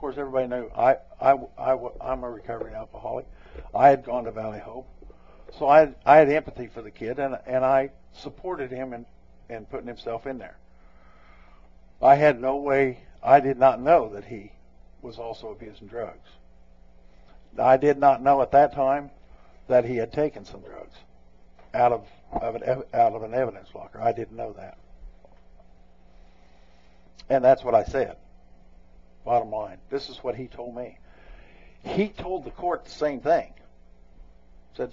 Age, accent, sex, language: 60-79, American, male, English